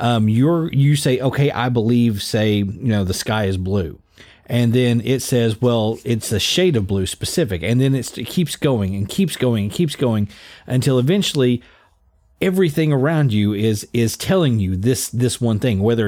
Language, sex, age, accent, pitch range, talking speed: English, male, 40-59, American, 100-130 Hz, 190 wpm